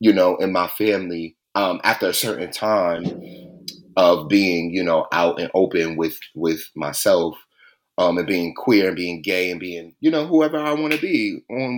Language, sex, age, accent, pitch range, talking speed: English, male, 30-49, American, 95-155 Hz, 190 wpm